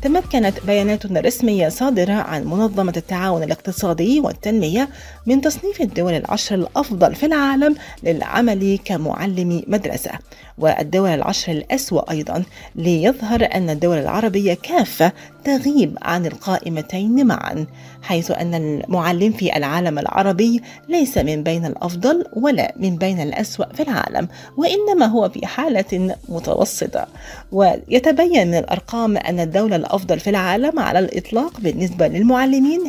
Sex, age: female, 30-49